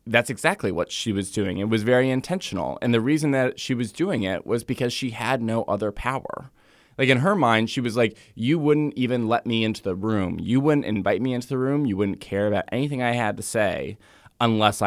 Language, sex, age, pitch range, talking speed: English, male, 20-39, 100-120 Hz, 230 wpm